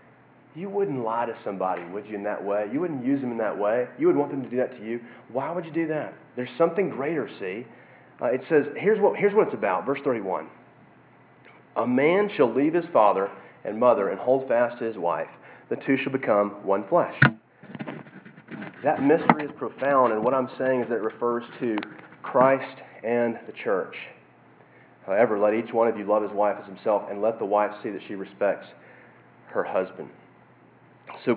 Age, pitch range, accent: 30-49, 115-145 Hz, American